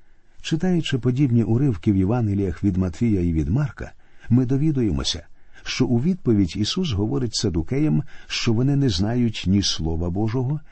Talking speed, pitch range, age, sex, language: 140 wpm, 100-135 Hz, 50-69, male, Ukrainian